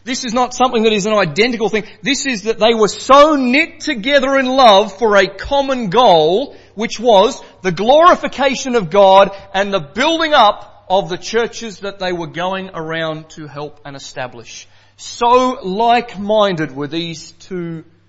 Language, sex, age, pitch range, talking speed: English, male, 40-59, 165-250 Hz, 165 wpm